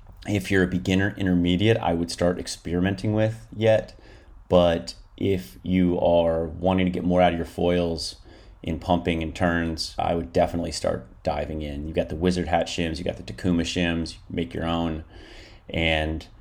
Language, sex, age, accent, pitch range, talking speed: English, male, 30-49, American, 85-95 Hz, 180 wpm